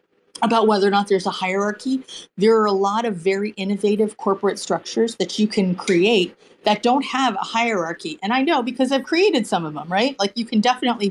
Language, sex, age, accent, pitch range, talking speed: English, female, 40-59, American, 175-220 Hz, 210 wpm